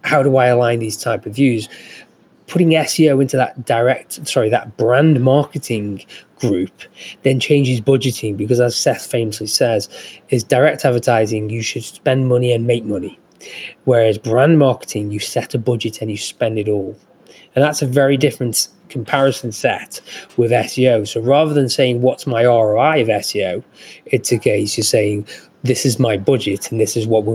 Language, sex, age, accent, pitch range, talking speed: English, male, 20-39, British, 115-135 Hz, 175 wpm